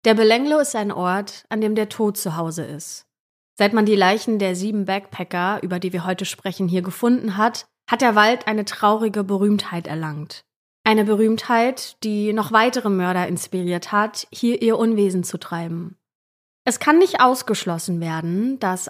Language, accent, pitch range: German, German, 185-235 Hz